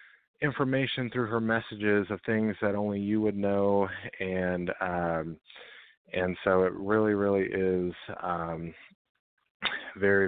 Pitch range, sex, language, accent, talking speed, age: 95-115 Hz, male, English, American, 125 wpm, 30-49